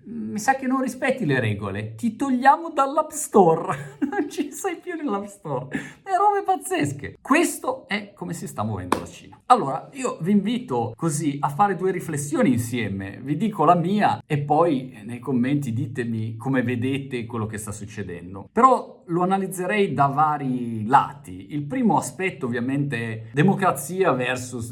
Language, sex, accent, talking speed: Italian, male, native, 160 wpm